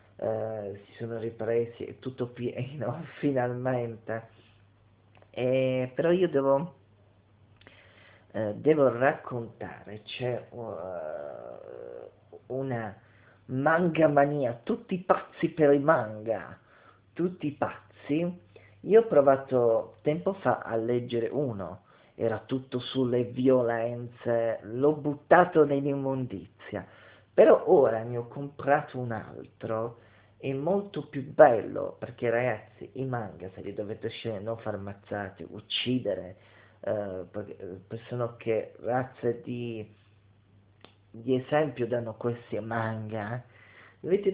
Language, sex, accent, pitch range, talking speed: Italian, male, native, 110-135 Hz, 105 wpm